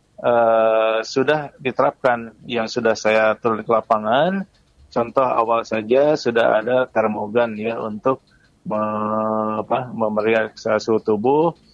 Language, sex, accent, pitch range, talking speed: Indonesian, male, native, 110-135 Hz, 110 wpm